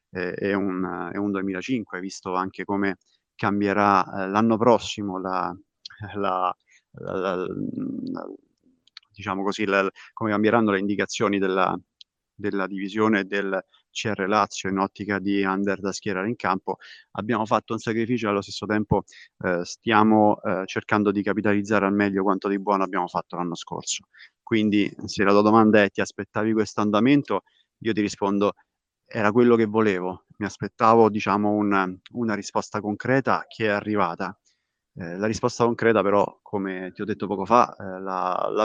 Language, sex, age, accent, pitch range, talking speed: Italian, male, 30-49, native, 95-110 Hz, 160 wpm